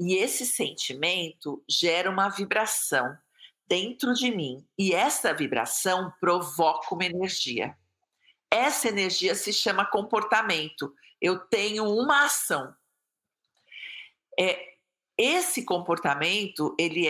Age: 50-69